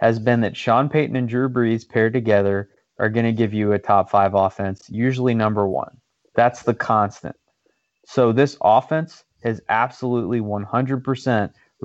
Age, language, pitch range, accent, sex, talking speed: 30-49, English, 105-130 Hz, American, male, 155 wpm